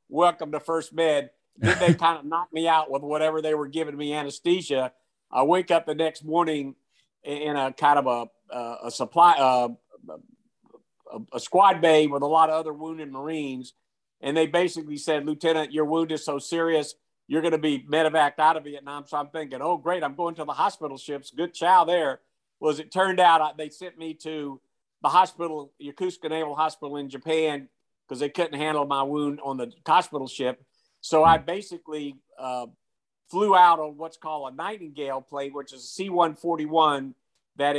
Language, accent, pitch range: English, American, 140-165 Hz